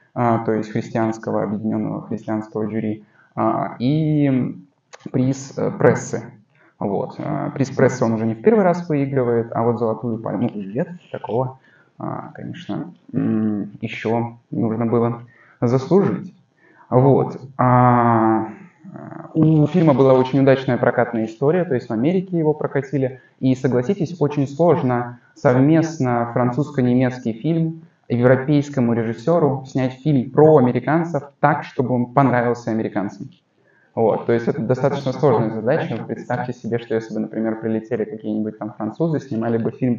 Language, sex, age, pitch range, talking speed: English, male, 20-39, 115-145 Hz, 120 wpm